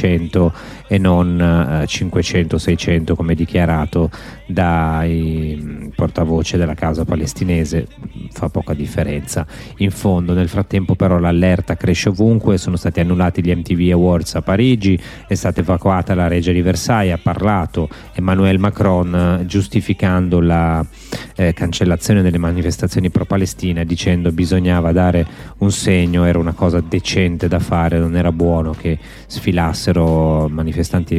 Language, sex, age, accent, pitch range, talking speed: Italian, male, 30-49, native, 85-95 Hz, 125 wpm